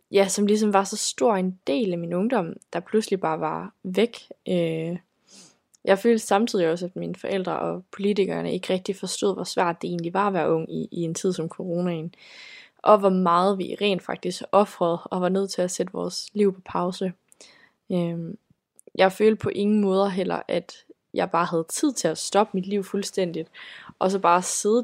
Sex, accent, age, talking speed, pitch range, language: female, native, 20-39, 200 wpm, 175-205 Hz, Danish